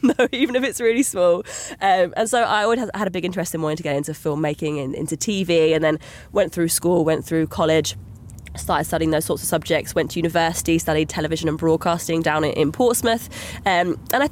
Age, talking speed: 20-39, 215 wpm